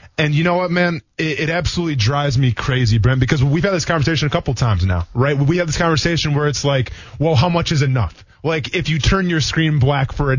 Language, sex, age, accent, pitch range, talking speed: English, male, 20-39, American, 130-185 Hz, 250 wpm